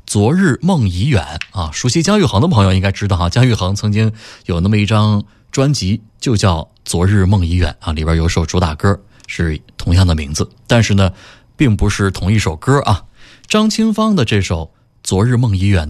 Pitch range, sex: 90-120 Hz, male